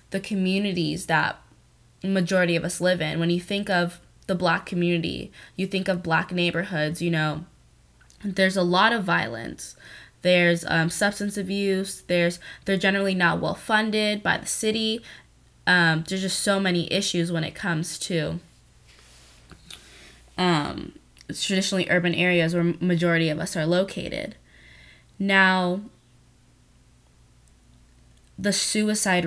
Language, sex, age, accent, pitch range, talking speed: English, female, 20-39, American, 165-190 Hz, 130 wpm